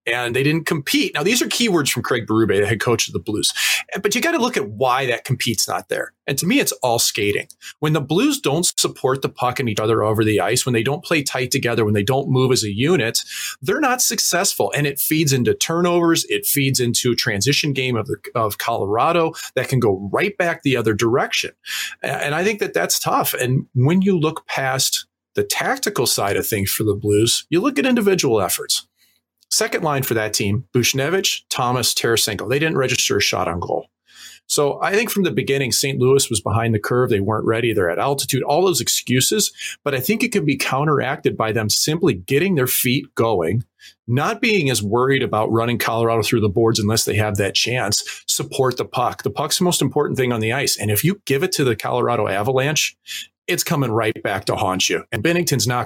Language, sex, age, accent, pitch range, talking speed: English, male, 40-59, American, 115-155 Hz, 220 wpm